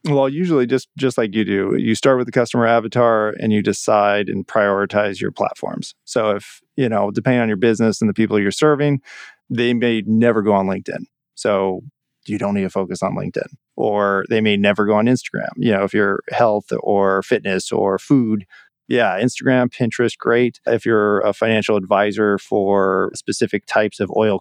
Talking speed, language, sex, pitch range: 190 wpm, English, male, 100-120 Hz